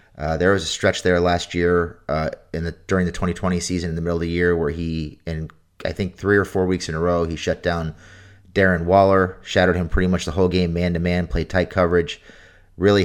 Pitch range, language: 80-90 Hz, English